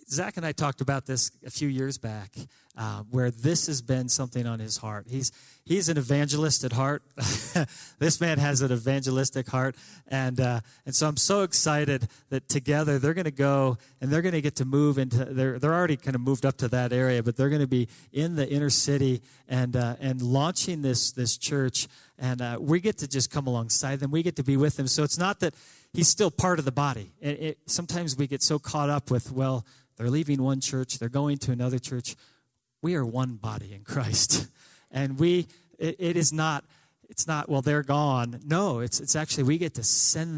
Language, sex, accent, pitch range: English, male, American, 125-150 Hz